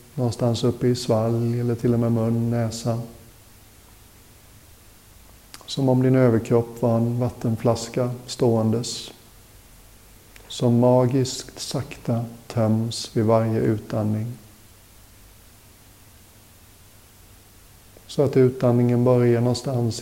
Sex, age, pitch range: male, 50-69, 105-120 Hz